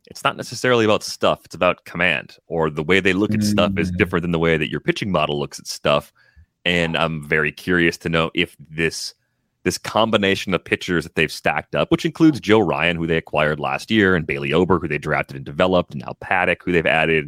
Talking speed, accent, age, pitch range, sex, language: 230 wpm, American, 30-49, 80-100 Hz, male, English